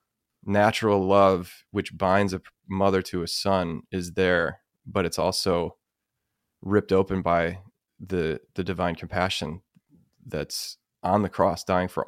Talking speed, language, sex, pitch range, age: 135 wpm, English, male, 95-105 Hz, 20-39